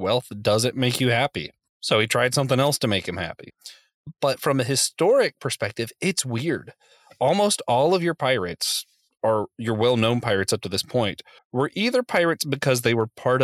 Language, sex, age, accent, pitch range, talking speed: English, male, 30-49, American, 110-135 Hz, 190 wpm